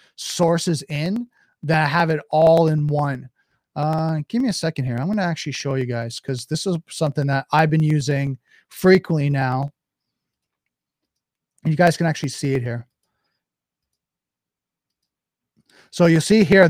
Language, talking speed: English, 155 wpm